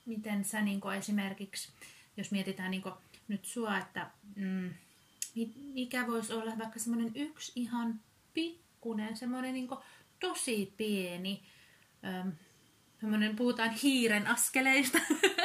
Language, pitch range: Finnish, 185-235 Hz